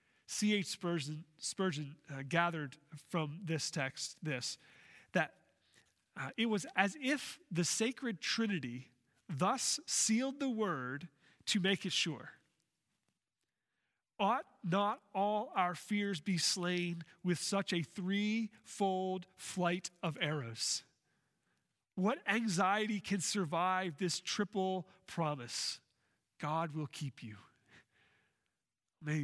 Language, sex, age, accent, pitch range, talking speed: English, male, 40-59, American, 155-195 Hz, 105 wpm